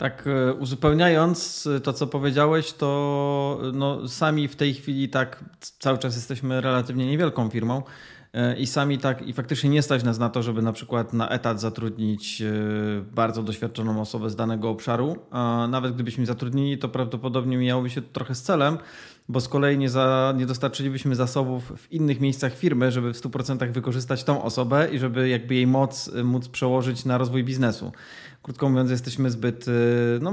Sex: male